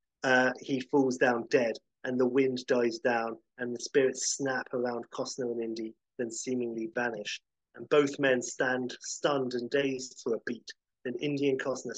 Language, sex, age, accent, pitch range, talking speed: English, male, 30-49, British, 120-160 Hz, 175 wpm